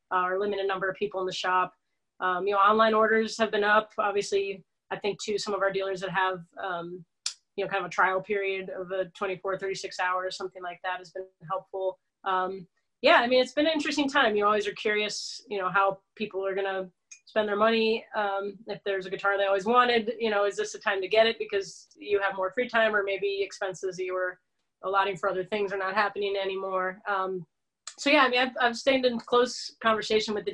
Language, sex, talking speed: English, female, 230 wpm